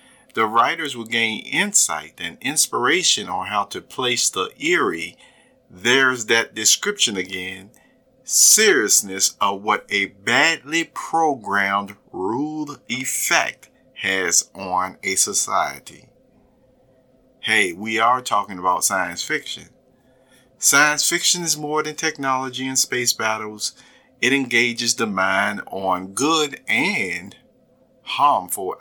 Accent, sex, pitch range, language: American, male, 110-155 Hz, English